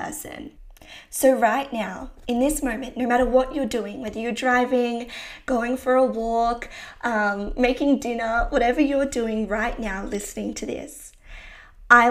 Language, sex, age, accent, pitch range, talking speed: English, female, 20-39, Australian, 220-260 Hz, 150 wpm